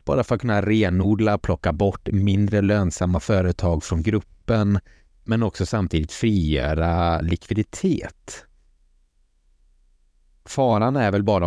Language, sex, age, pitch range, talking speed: Swedish, male, 30-49, 85-105 Hz, 115 wpm